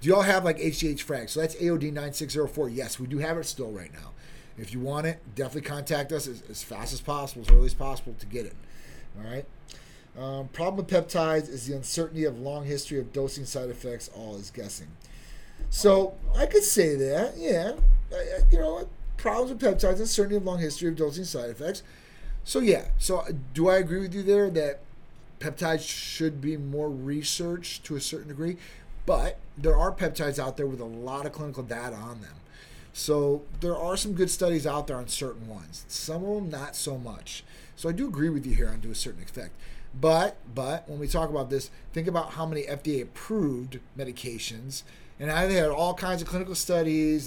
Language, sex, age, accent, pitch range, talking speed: English, male, 30-49, American, 130-165 Hz, 205 wpm